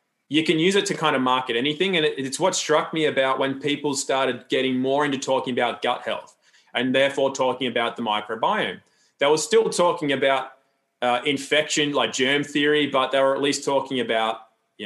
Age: 20-39